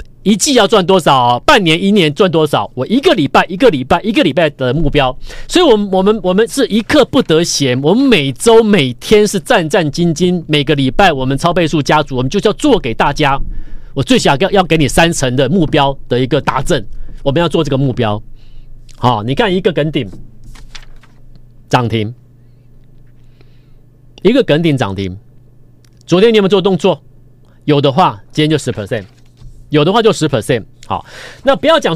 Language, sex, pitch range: Chinese, male, 125-180 Hz